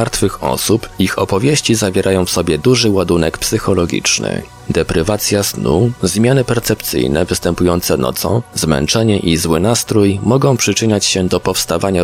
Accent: native